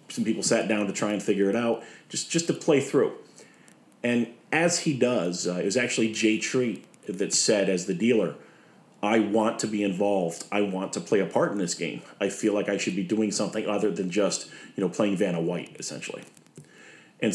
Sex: male